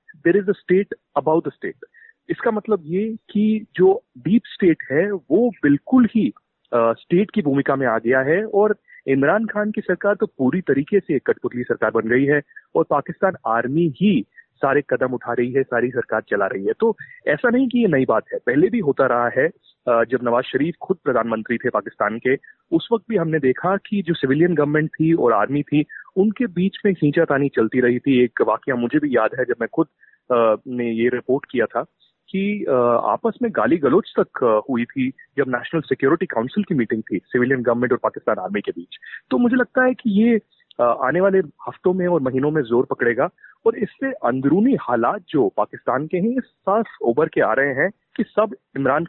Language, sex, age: Hindi, male, 30-49